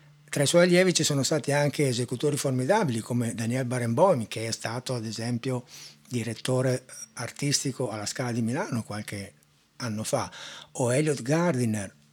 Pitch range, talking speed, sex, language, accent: 115-145 Hz, 150 wpm, male, Italian, native